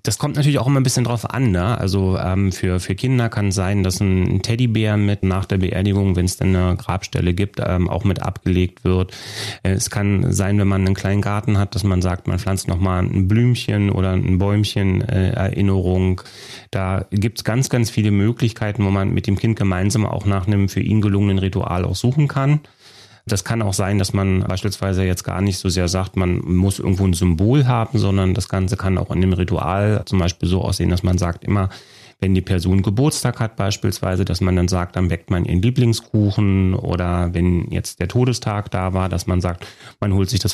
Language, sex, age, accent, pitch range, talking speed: German, male, 30-49, German, 95-110 Hz, 215 wpm